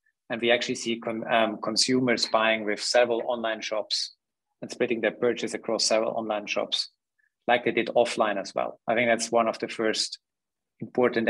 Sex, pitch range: male, 105-115 Hz